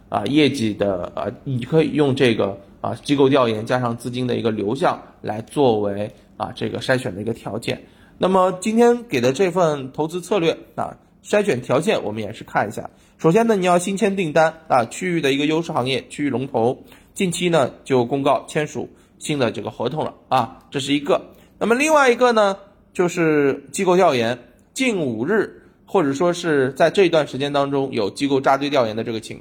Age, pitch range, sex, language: 20-39, 115-155 Hz, male, Chinese